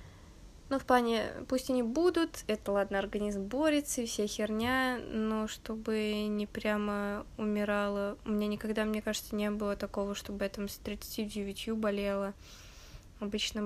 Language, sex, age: Russian, female, 20-39